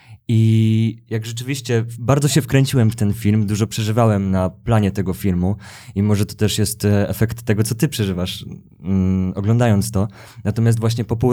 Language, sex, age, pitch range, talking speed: Polish, male, 20-39, 105-120 Hz, 170 wpm